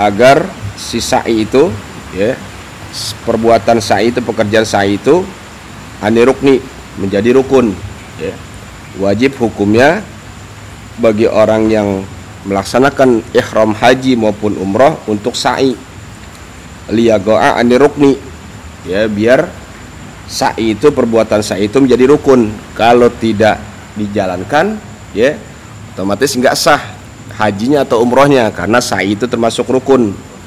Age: 50-69